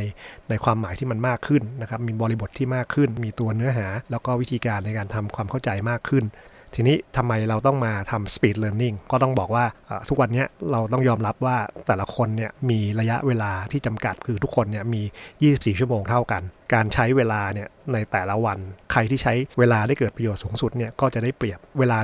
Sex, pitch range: male, 105-130 Hz